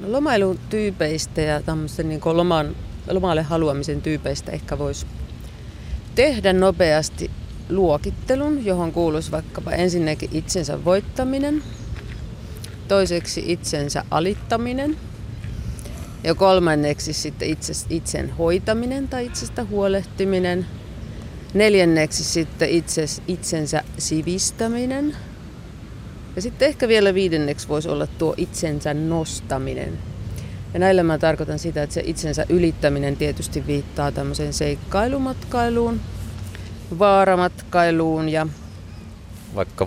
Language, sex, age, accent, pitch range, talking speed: Finnish, female, 30-49, native, 145-190 Hz, 90 wpm